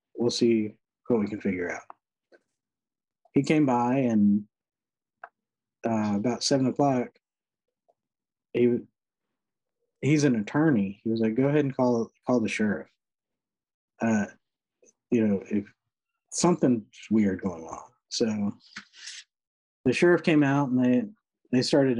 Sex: male